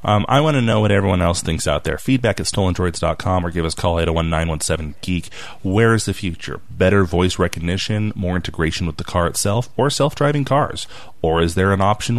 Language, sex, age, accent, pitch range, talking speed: English, male, 30-49, American, 85-120 Hz, 215 wpm